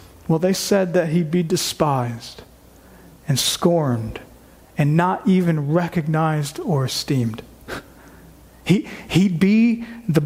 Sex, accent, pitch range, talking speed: male, American, 145-205 Hz, 110 wpm